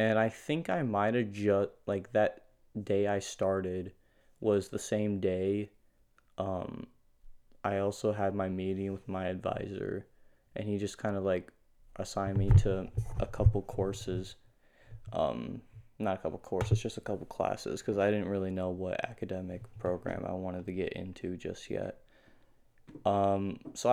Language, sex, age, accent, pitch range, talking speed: English, male, 20-39, American, 95-115 Hz, 160 wpm